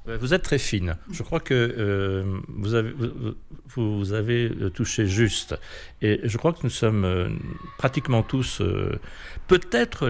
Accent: French